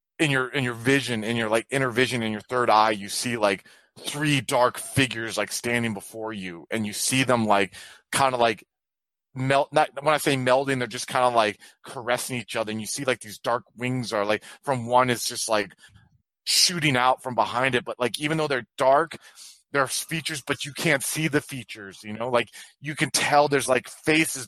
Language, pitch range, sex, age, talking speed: English, 120-145 Hz, male, 30-49, 215 wpm